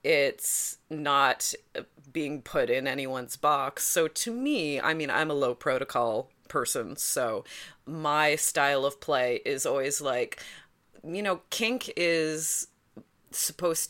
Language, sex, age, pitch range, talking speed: English, female, 20-39, 140-180 Hz, 130 wpm